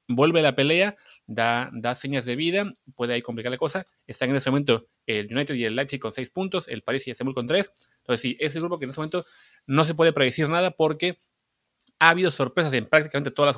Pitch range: 120-145 Hz